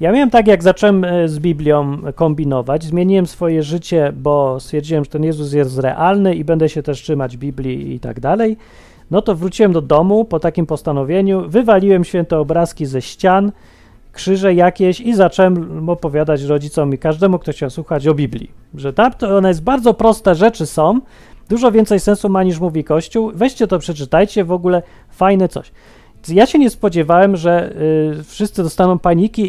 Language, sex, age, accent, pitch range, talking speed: Polish, male, 40-59, native, 150-195 Hz, 165 wpm